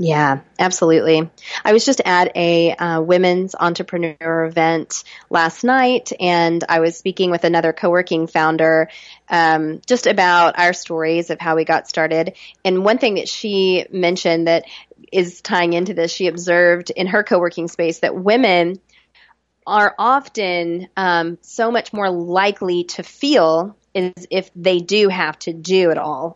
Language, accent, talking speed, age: English, American, 155 wpm, 30-49